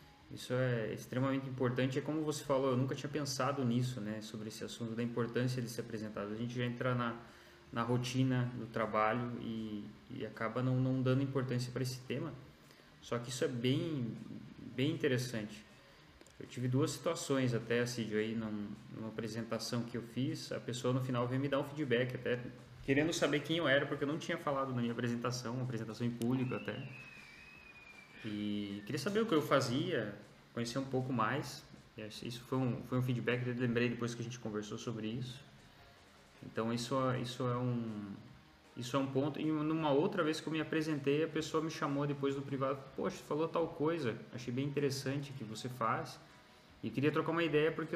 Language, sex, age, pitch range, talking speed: Portuguese, male, 20-39, 115-140 Hz, 195 wpm